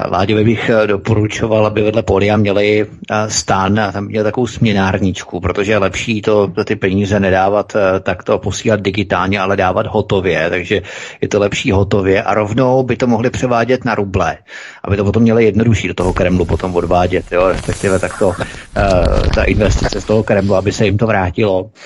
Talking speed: 175 wpm